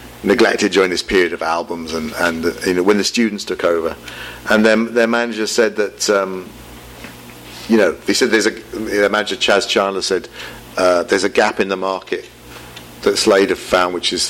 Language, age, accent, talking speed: English, 40-59, British, 195 wpm